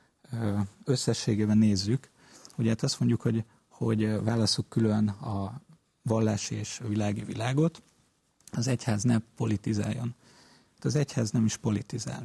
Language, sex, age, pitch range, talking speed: Hungarian, male, 40-59, 105-125 Hz, 120 wpm